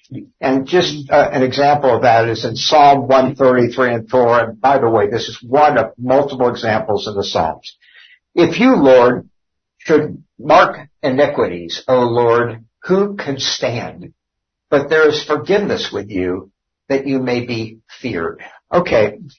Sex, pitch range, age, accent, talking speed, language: male, 115-145 Hz, 60-79, American, 150 wpm, English